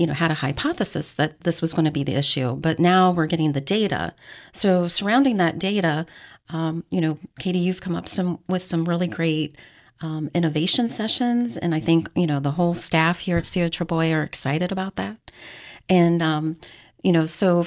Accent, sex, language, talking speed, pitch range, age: American, female, English, 195 wpm, 160-190 Hz, 40-59